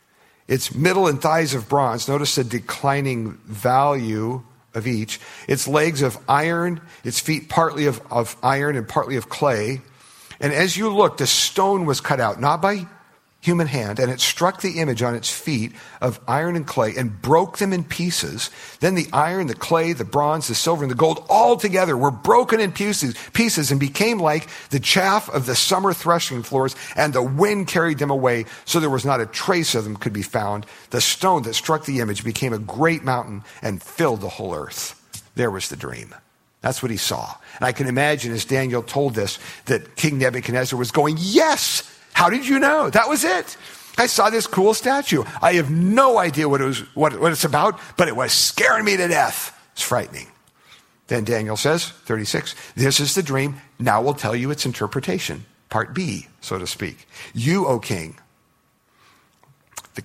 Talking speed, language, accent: 195 wpm, English, American